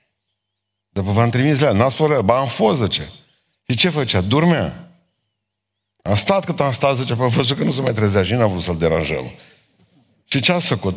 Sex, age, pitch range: male, 50-69, 100-140 Hz